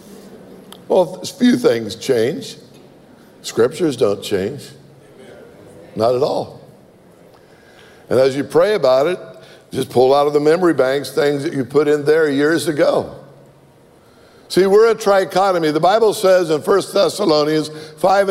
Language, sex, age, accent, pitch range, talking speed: English, male, 60-79, American, 150-190 Hz, 140 wpm